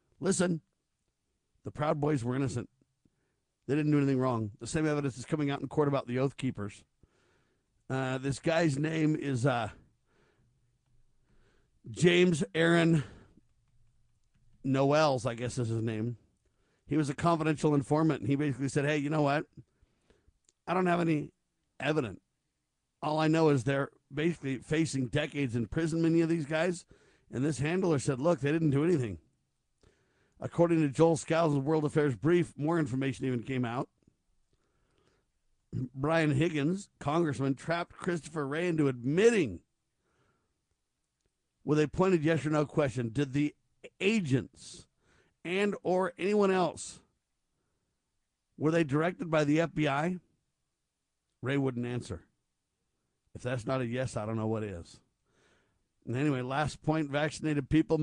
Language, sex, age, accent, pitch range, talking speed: English, male, 50-69, American, 130-160 Hz, 145 wpm